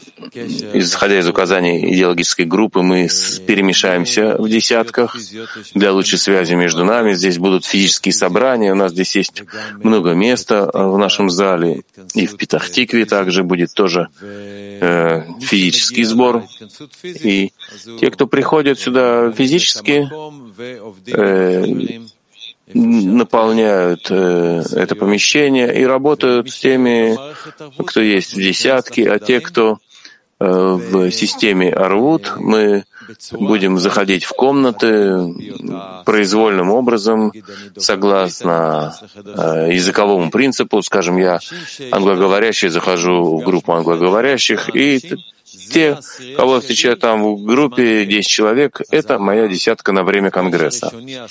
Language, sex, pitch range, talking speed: Russian, male, 95-120 Hz, 110 wpm